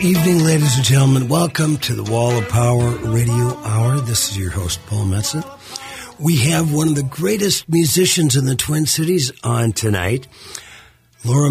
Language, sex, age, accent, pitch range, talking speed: English, male, 50-69, American, 120-145 Hz, 165 wpm